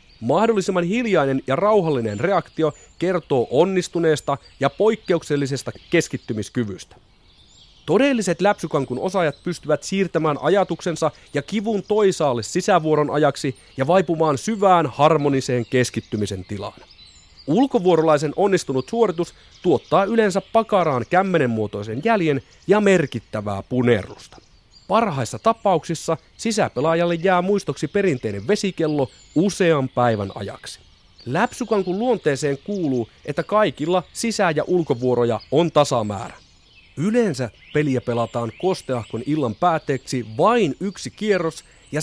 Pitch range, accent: 125-190 Hz, native